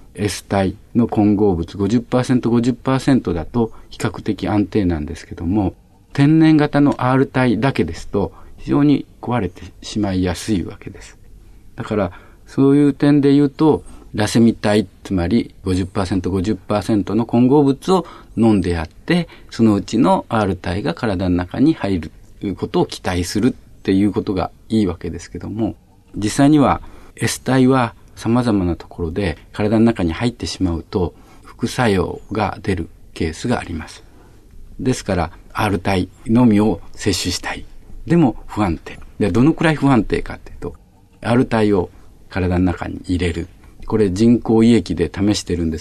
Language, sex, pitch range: Japanese, male, 90-115 Hz